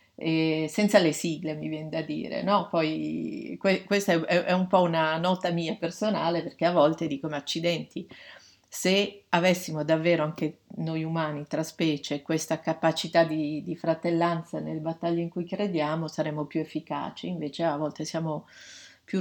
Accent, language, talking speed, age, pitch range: native, Italian, 160 wpm, 40-59, 160-185 Hz